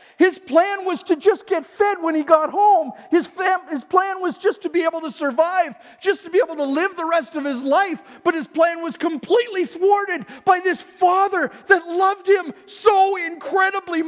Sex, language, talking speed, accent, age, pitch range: male, English, 195 wpm, American, 50-69, 305-385 Hz